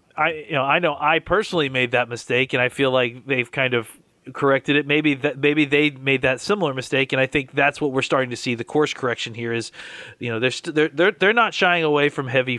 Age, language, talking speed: 30-49, English, 255 wpm